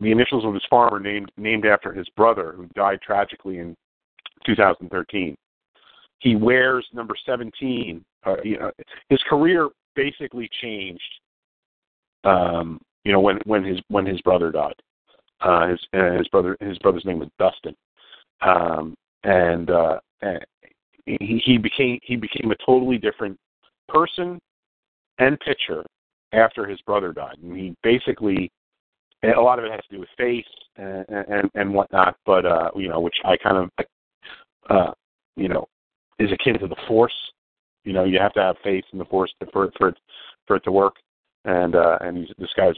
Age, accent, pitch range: 40-59, American, 90-115 Hz